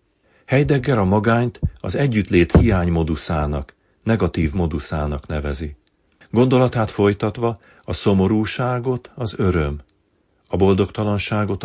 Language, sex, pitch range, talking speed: Hungarian, male, 85-105 Hz, 90 wpm